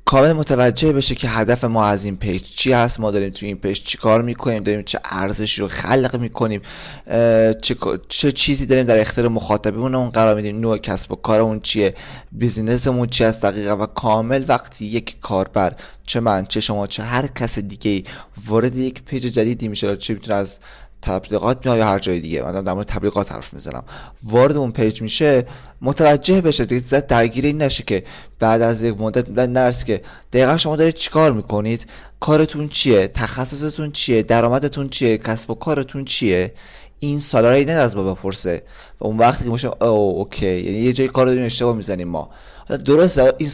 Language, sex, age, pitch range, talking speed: Persian, male, 20-39, 105-130 Hz, 185 wpm